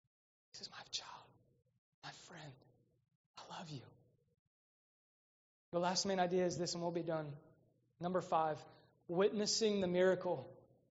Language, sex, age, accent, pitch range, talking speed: English, male, 20-39, American, 150-200 Hz, 130 wpm